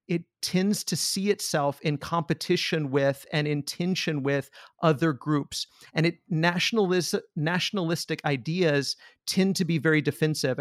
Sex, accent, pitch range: male, American, 145-180 Hz